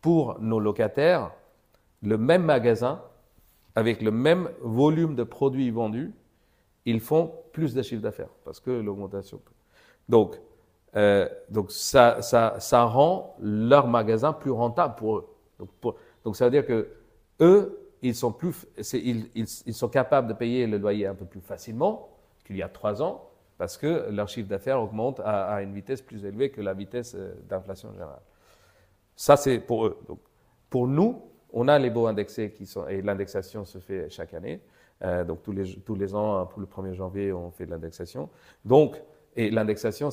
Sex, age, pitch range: male, 50-69, 100-125 Hz